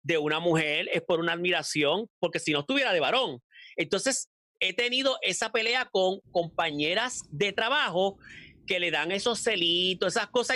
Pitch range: 170-245 Hz